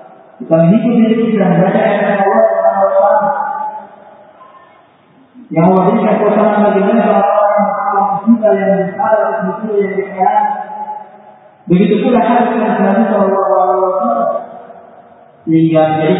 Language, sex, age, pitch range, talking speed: Indonesian, male, 20-39, 160-225 Hz, 70 wpm